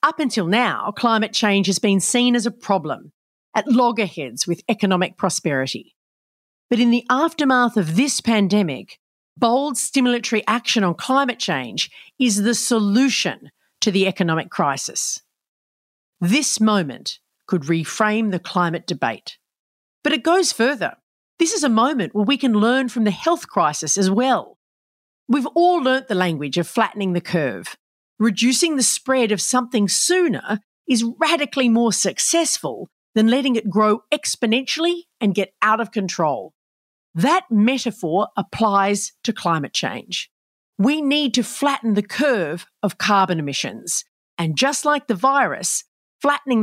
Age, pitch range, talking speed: 40-59, 190-260 Hz, 145 wpm